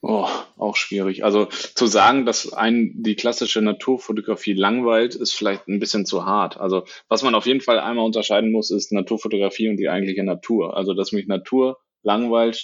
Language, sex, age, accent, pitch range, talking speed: German, male, 20-39, German, 95-115 Hz, 180 wpm